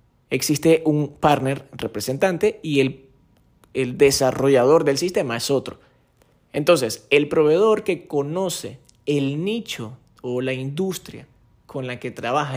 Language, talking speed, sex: Spanish, 125 wpm, male